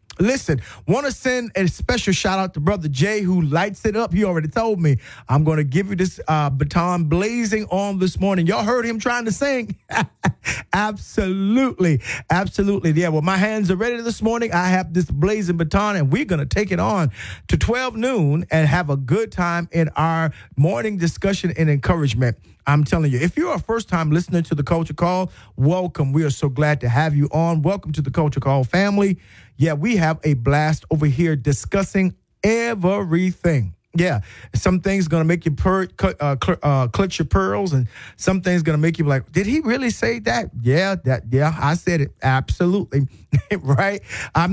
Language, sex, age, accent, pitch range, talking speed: English, male, 40-59, American, 150-195 Hz, 200 wpm